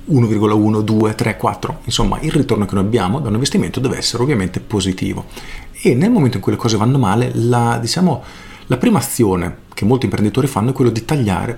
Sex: male